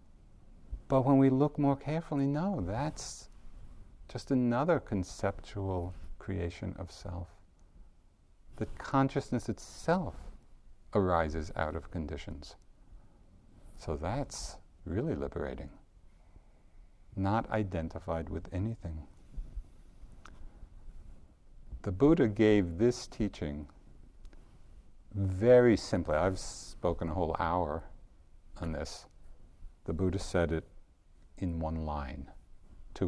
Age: 50-69